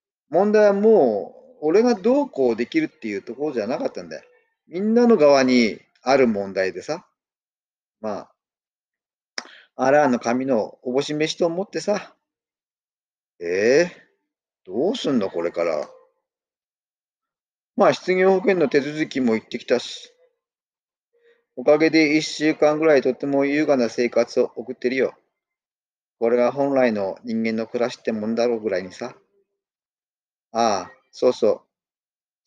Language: Japanese